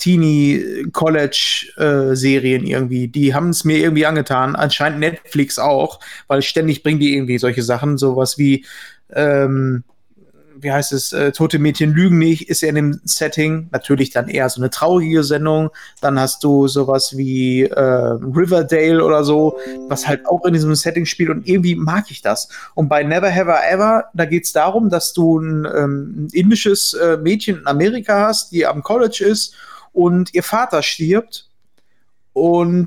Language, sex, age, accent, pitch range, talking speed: German, male, 20-39, German, 145-180 Hz, 160 wpm